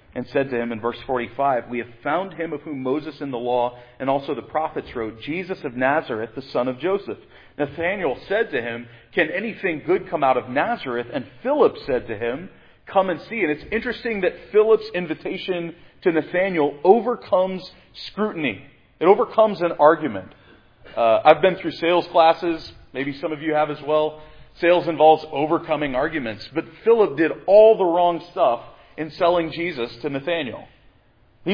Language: English